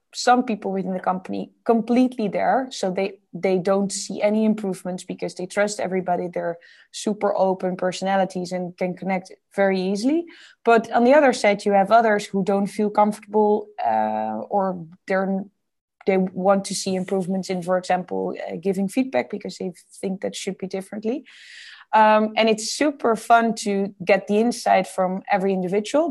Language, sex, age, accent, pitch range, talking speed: English, female, 20-39, Dutch, 190-225 Hz, 165 wpm